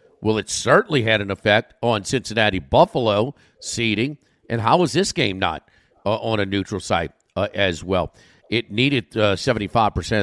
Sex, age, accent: male, 50-69, American